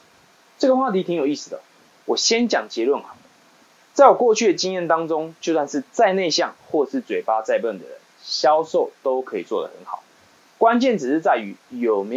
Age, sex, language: 20-39, male, Chinese